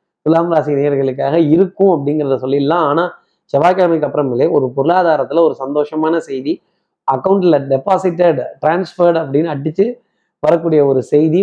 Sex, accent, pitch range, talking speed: male, native, 140-180 Hz, 115 wpm